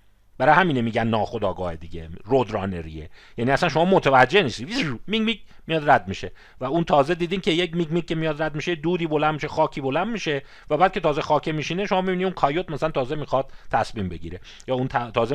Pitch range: 105-165 Hz